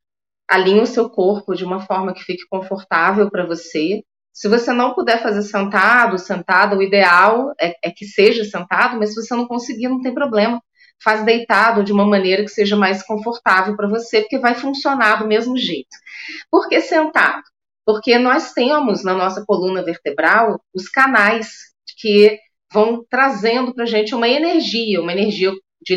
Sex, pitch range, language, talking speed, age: female, 200-245 Hz, Portuguese, 170 wpm, 30-49